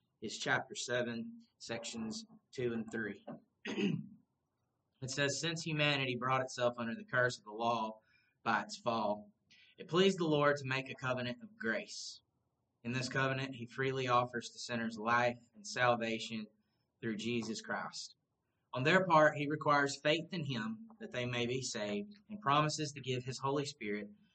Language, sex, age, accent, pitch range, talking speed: English, male, 20-39, American, 120-140 Hz, 165 wpm